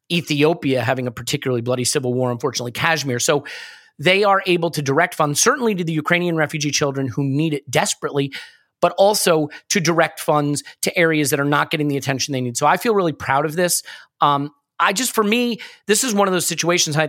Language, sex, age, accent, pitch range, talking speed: English, male, 30-49, American, 145-185 Hz, 210 wpm